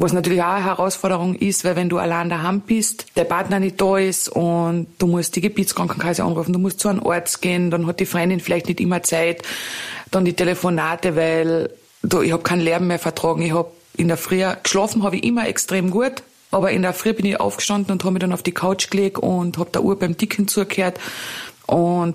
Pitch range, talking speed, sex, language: 170-190 Hz, 220 wpm, female, German